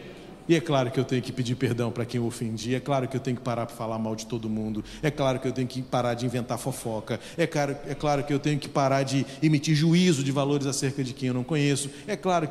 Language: Portuguese